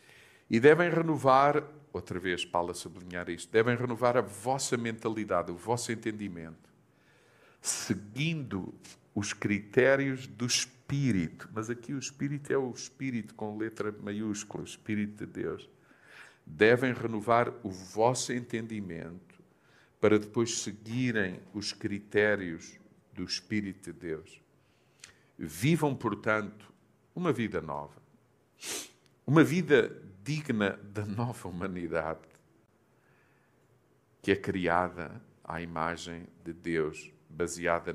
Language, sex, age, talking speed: Portuguese, male, 50-69, 110 wpm